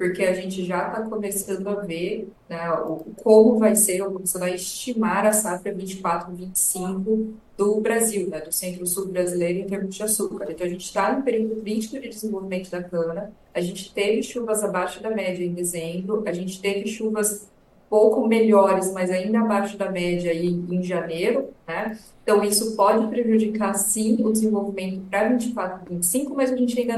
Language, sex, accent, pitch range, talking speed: Portuguese, female, Brazilian, 185-220 Hz, 180 wpm